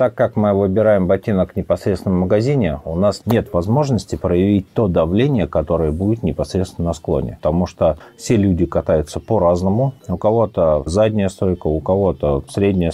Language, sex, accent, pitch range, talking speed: Russian, male, native, 80-100 Hz, 155 wpm